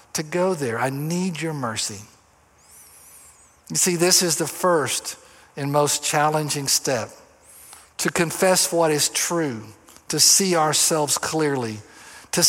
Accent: American